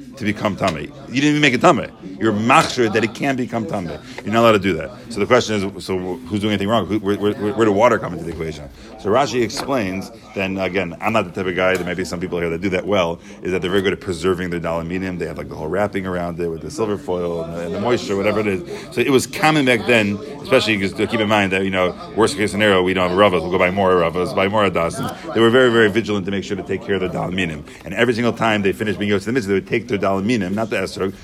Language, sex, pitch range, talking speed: English, male, 95-120 Hz, 290 wpm